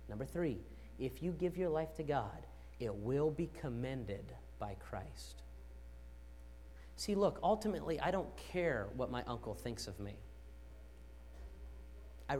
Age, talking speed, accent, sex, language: 30-49, 135 wpm, American, male, English